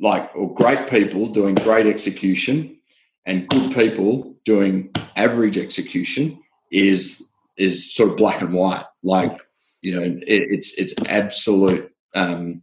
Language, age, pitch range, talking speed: English, 30-49, 95-115 Hz, 135 wpm